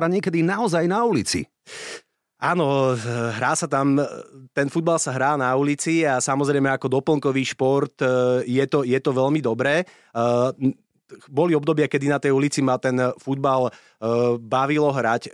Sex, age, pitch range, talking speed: male, 30-49, 130-145 Hz, 140 wpm